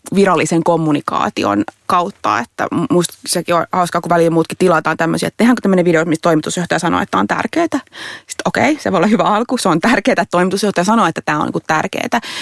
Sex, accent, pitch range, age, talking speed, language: female, native, 160-200 Hz, 30-49, 200 wpm, Finnish